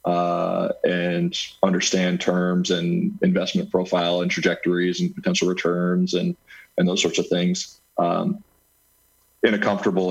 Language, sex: English, male